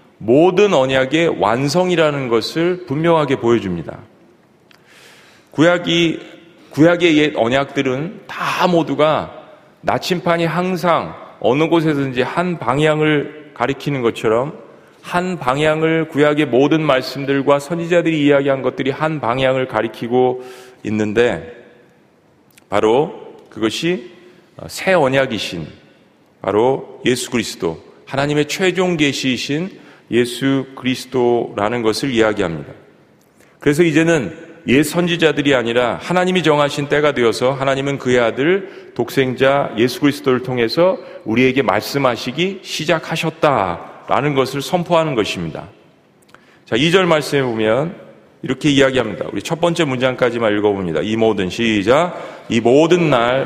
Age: 40-59